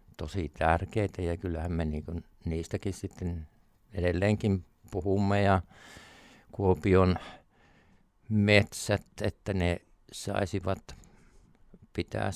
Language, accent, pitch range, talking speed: Finnish, native, 90-110 Hz, 85 wpm